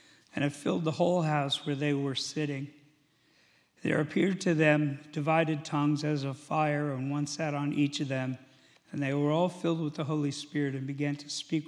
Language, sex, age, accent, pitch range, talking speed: English, male, 50-69, American, 150-180 Hz, 200 wpm